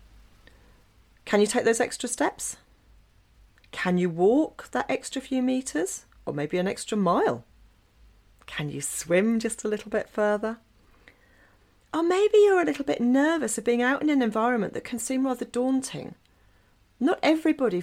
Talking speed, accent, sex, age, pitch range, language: 155 wpm, British, female, 40-59, 170-260 Hz, English